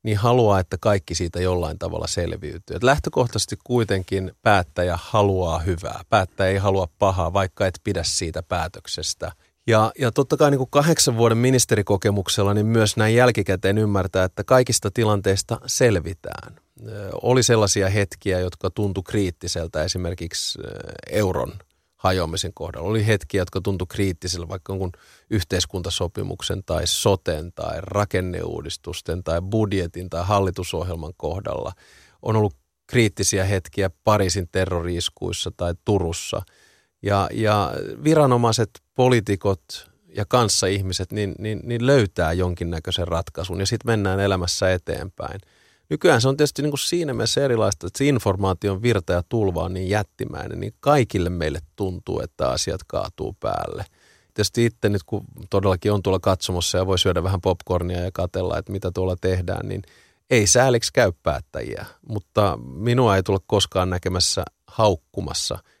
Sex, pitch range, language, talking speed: male, 90-110 Hz, Finnish, 135 wpm